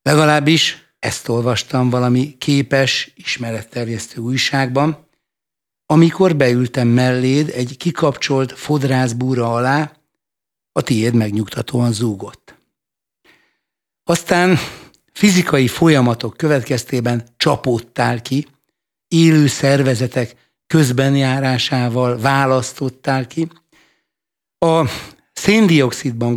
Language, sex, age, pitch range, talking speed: Hungarian, male, 60-79, 125-155 Hz, 70 wpm